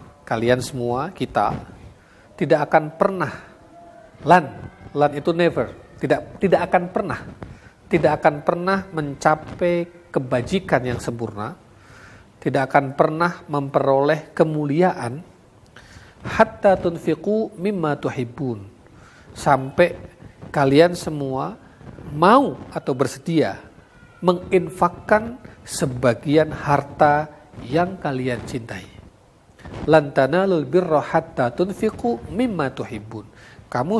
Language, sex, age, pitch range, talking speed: Indonesian, male, 40-59, 125-175 Hz, 90 wpm